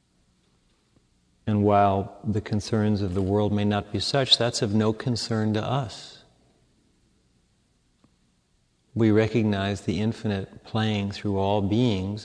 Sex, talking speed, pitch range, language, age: male, 120 wpm, 95-110 Hz, English, 40-59